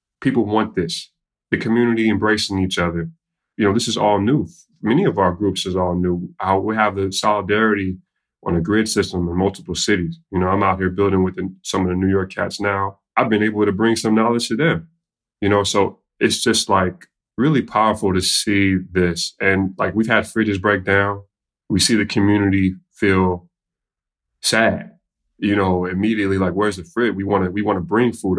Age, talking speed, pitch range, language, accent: 20-39, 200 wpm, 90-105 Hz, English, American